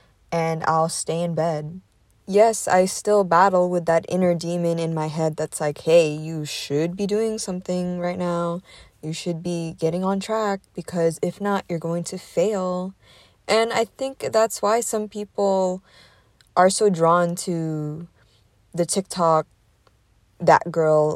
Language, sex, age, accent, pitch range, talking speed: English, female, 20-39, American, 160-200 Hz, 155 wpm